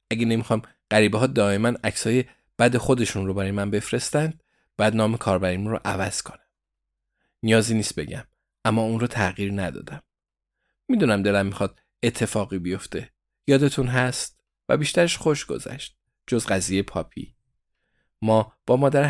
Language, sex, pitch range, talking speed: Persian, male, 100-120 Hz, 130 wpm